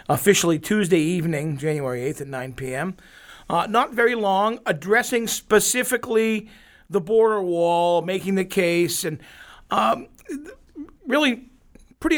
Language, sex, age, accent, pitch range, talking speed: English, male, 50-69, American, 165-210 Hz, 120 wpm